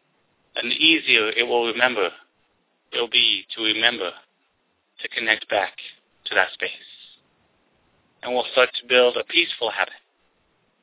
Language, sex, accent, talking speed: English, male, American, 140 wpm